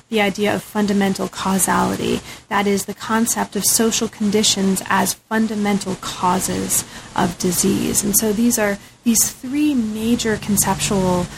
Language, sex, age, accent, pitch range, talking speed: English, female, 30-49, American, 195-230 Hz, 130 wpm